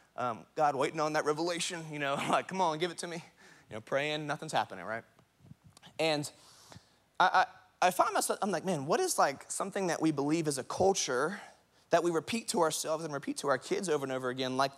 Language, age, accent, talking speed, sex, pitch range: English, 30-49, American, 225 wpm, male, 155-200 Hz